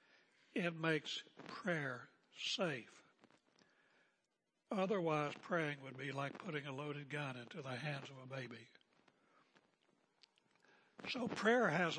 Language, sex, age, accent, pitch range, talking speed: English, male, 60-79, American, 140-175 Hz, 110 wpm